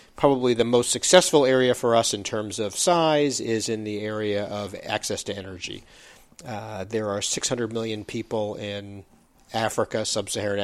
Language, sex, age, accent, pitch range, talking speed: English, male, 40-59, American, 105-125 Hz, 160 wpm